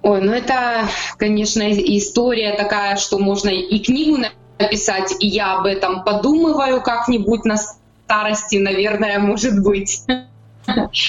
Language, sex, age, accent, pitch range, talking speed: Ukrainian, female, 20-39, native, 195-230 Hz, 120 wpm